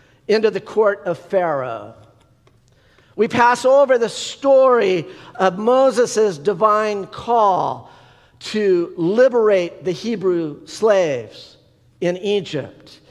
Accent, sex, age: American, male, 50-69